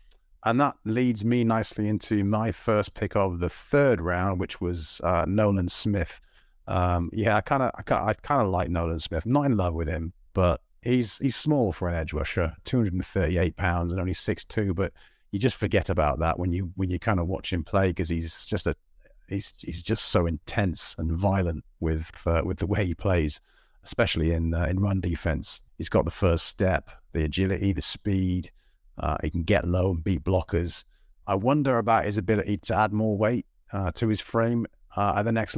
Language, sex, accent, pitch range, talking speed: English, male, British, 85-105 Hz, 210 wpm